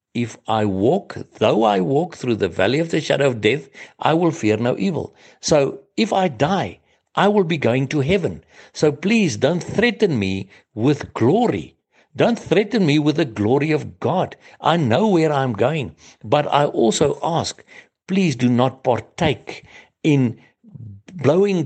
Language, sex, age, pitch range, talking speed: English, male, 60-79, 110-165 Hz, 165 wpm